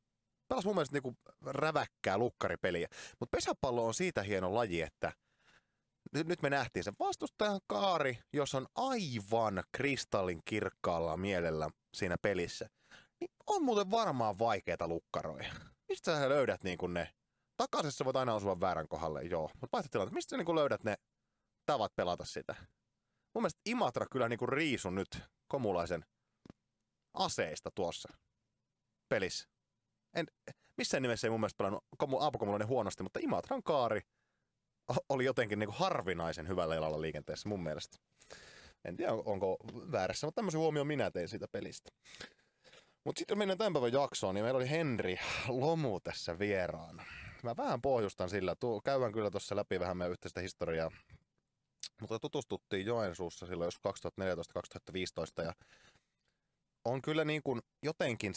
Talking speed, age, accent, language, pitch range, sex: 135 wpm, 30-49, native, Finnish, 90-155 Hz, male